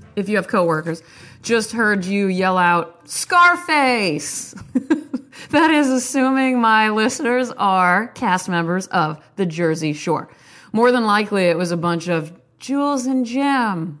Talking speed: 140 wpm